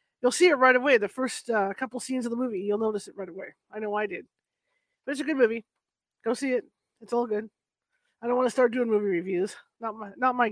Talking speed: 250 wpm